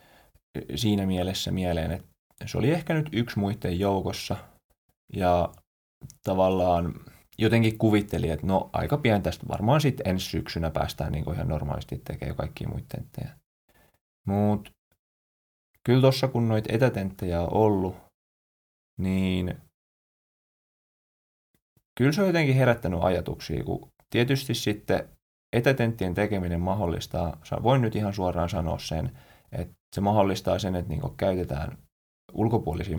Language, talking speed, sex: Finnish, 120 wpm, male